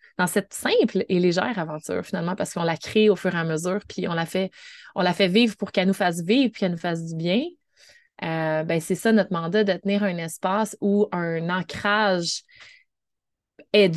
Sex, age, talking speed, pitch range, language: female, 30-49, 205 wpm, 180-235 Hz, English